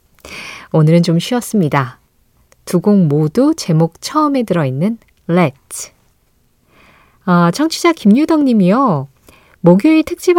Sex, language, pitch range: female, Korean, 165-240 Hz